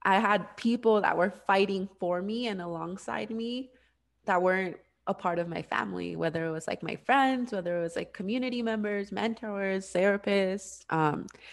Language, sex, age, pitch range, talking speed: English, female, 20-39, 170-205 Hz, 170 wpm